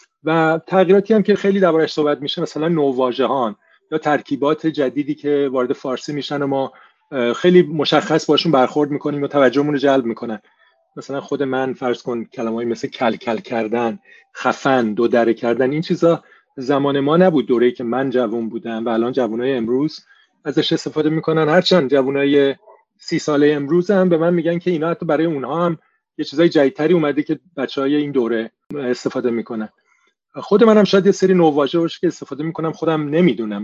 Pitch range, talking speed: 125-160 Hz, 175 wpm